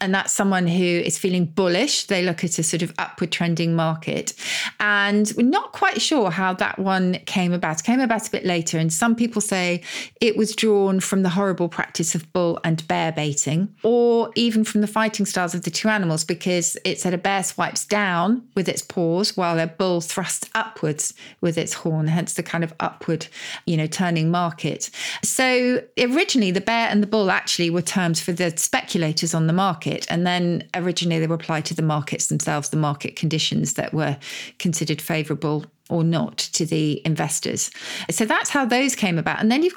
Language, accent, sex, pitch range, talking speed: English, British, female, 165-205 Hz, 200 wpm